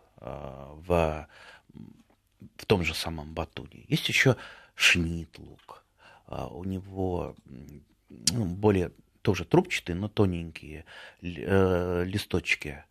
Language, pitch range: Russian, 85-105 Hz